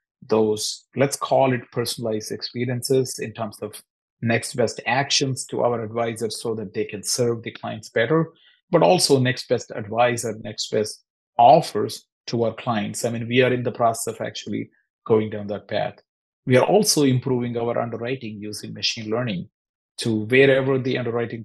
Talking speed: 170 wpm